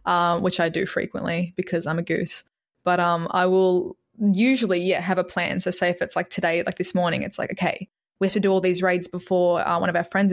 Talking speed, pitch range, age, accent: 250 wpm, 175-205 Hz, 20-39, Australian